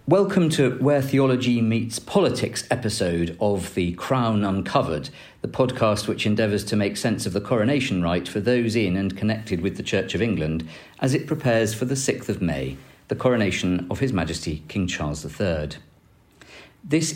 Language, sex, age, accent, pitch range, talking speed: English, male, 40-59, British, 90-125 Hz, 170 wpm